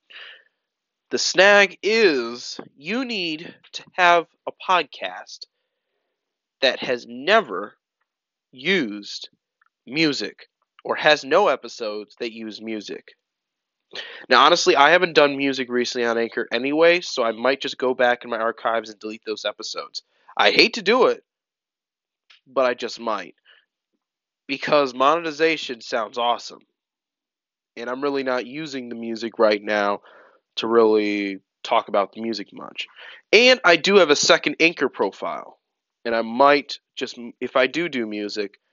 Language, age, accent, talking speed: English, 20-39, American, 140 wpm